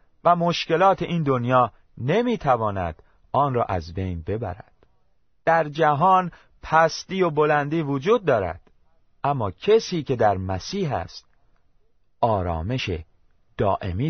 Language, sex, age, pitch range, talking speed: Persian, male, 40-59, 95-150 Hz, 105 wpm